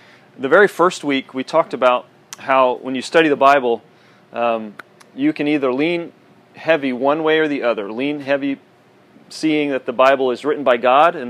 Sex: male